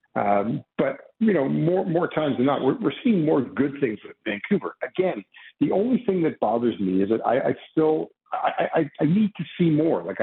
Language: English